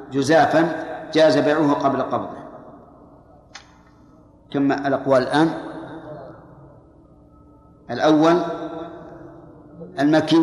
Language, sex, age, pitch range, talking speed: Arabic, male, 50-69, 140-165 Hz, 60 wpm